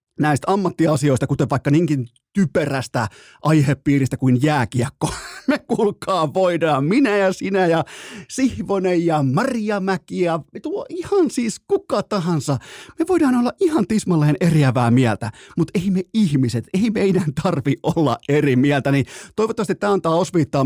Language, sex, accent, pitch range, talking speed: Finnish, male, native, 130-185 Hz, 140 wpm